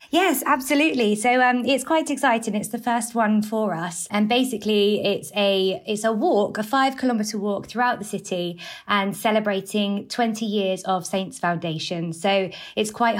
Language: English